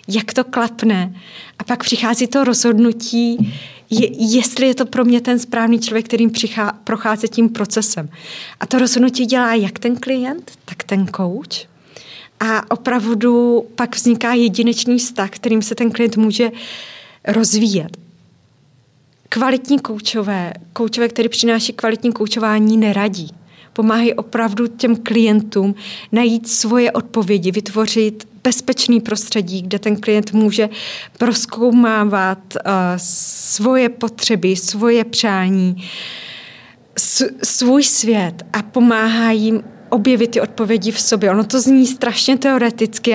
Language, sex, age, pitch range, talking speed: Czech, female, 20-39, 210-240 Hz, 115 wpm